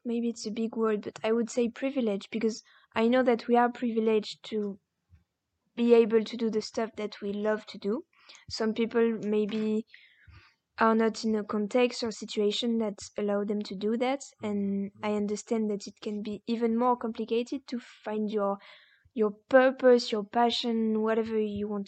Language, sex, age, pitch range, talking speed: English, female, 20-39, 215-240 Hz, 180 wpm